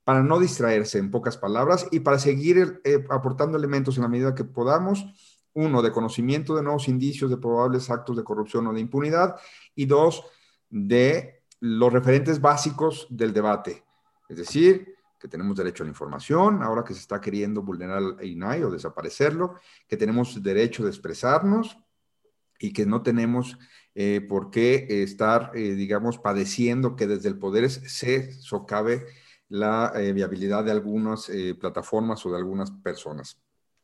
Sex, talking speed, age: male, 160 wpm, 40-59